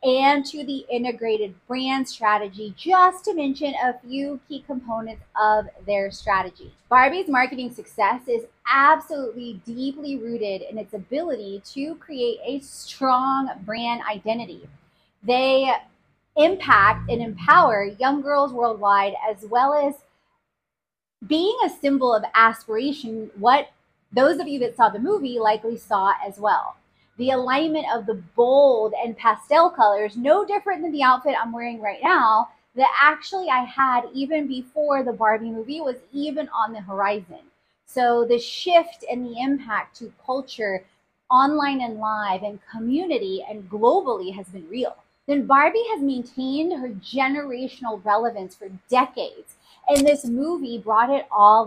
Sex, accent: female, American